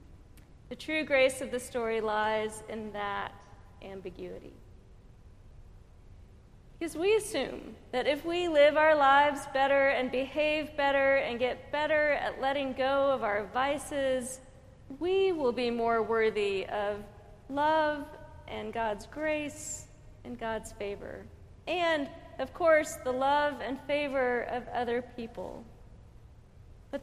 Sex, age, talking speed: female, 40-59, 125 wpm